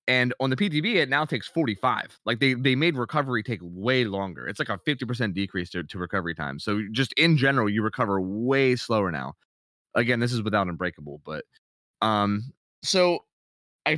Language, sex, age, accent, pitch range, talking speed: English, male, 20-39, American, 105-150 Hz, 185 wpm